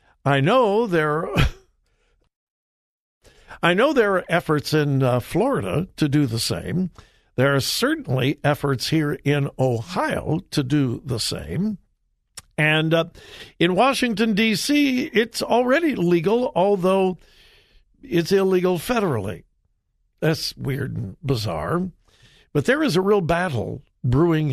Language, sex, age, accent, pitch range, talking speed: English, male, 60-79, American, 130-185 Hz, 120 wpm